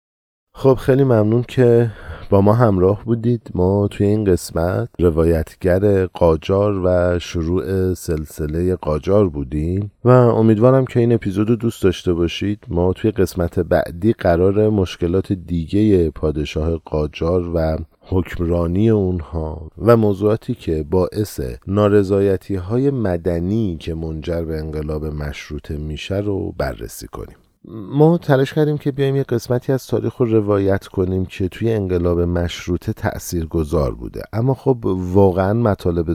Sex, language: male, Persian